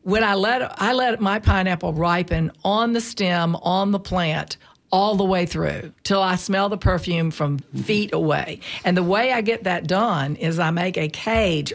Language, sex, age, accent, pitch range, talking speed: English, female, 50-69, American, 175-215 Hz, 195 wpm